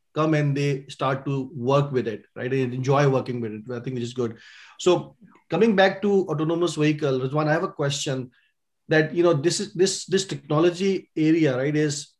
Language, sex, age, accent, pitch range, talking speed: English, male, 30-49, Indian, 135-155 Hz, 200 wpm